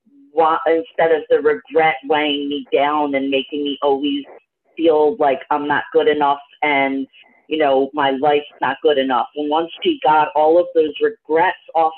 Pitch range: 150-190 Hz